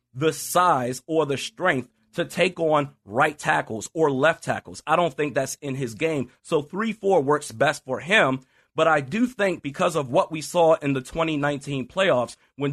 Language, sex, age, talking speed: English, male, 30-49, 190 wpm